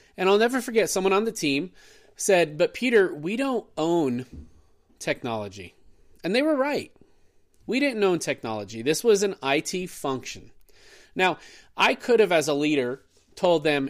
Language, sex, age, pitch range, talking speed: English, male, 30-49, 130-200 Hz, 160 wpm